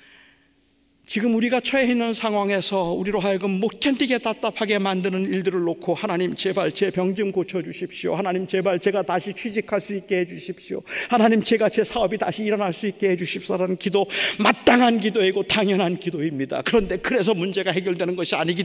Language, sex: Korean, male